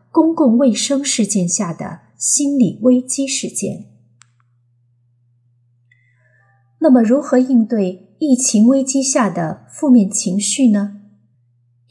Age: 30-49